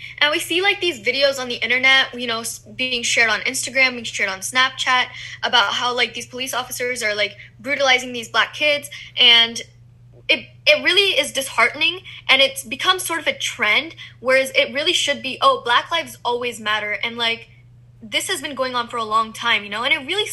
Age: 10-29